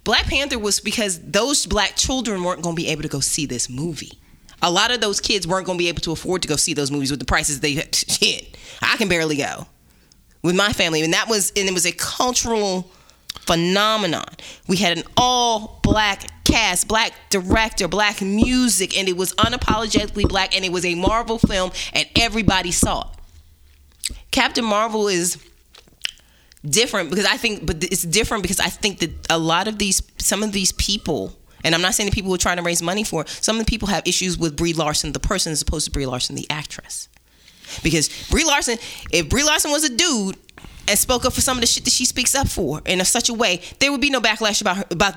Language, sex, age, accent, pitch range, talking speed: English, female, 20-39, American, 165-215 Hz, 225 wpm